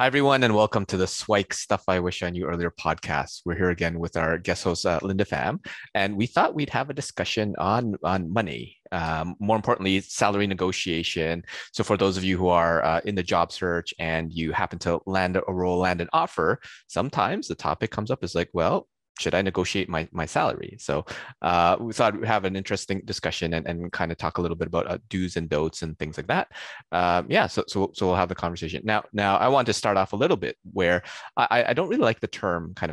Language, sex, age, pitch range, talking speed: English, male, 20-39, 85-105 Hz, 235 wpm